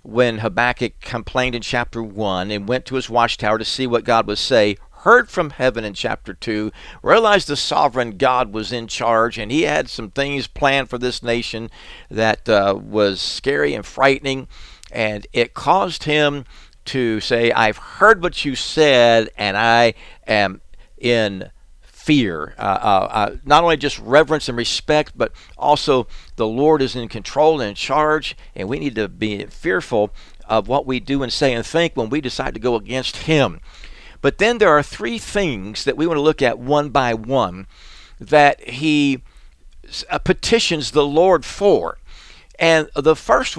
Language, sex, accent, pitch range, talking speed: English, male, American, 110-150 Hz, 175 wpm